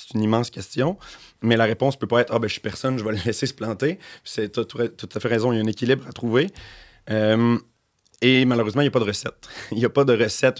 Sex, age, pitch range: male, 30-49, 110-125 Hz